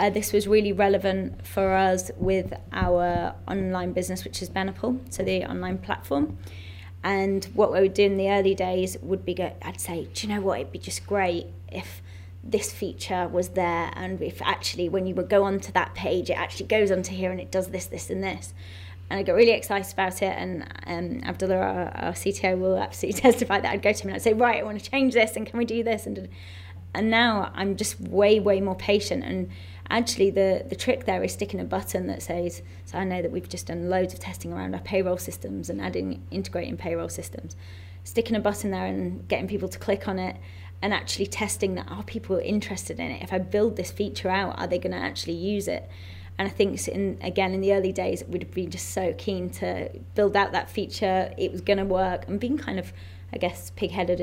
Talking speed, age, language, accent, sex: 225 wpm, 20-39, English, British, female